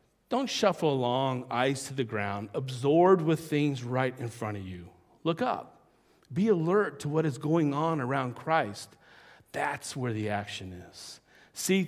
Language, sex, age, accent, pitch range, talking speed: English, male, 50-69, American, 120-160 Hz, 160 wpm